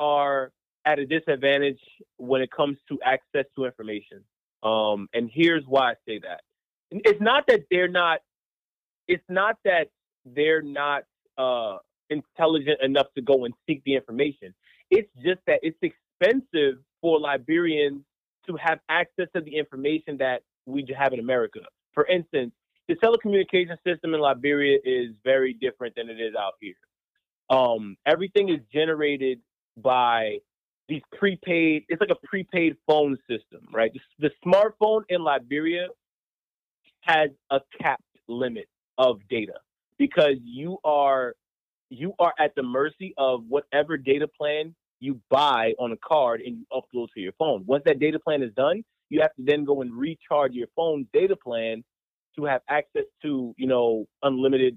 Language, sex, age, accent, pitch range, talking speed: English, male, 30-49, American, 130-175 Hz, 155 wpm